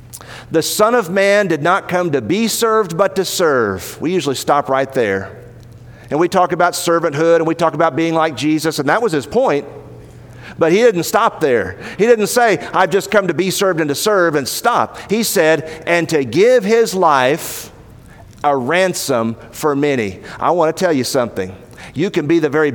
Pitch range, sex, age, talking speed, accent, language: 135-180 Hz, male, 50-69, 200 wpm, American, English